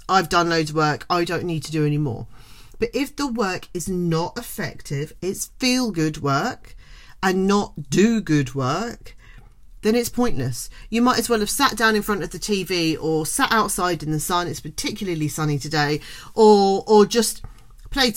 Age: 40-59